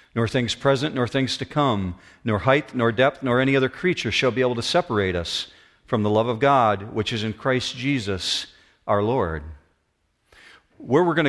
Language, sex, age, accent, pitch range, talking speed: English, male, 40-59, American, 105-135 Hz, 190 wpm